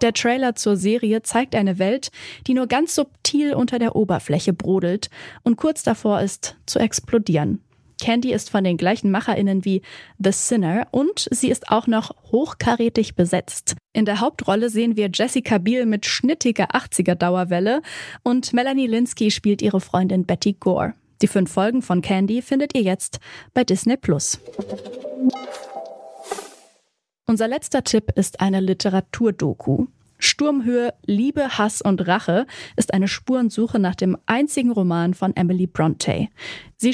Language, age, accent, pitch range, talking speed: German, 10-29, German, 195-250 Hz, 145 wpm